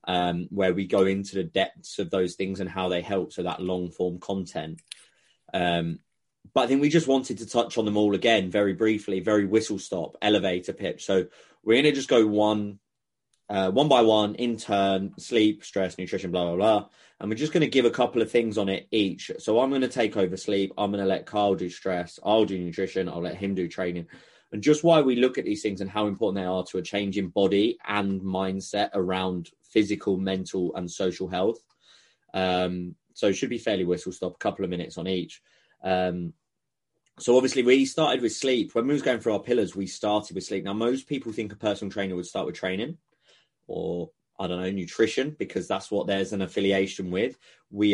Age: 20-39